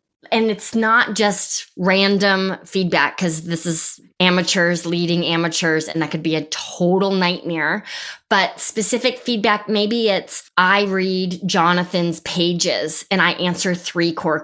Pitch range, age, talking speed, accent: 170-195 Hz, 20-39, 135 wpm, American